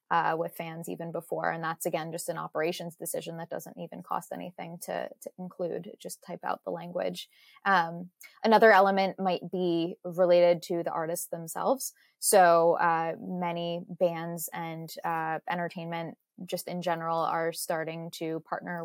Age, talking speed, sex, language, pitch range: 20-39, 155 wpm, female, English, 165-185 Hz